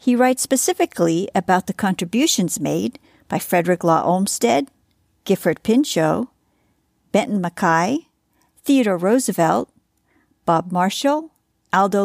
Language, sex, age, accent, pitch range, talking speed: English, female, 50-69, American, 175-240 Hz, 100 wpm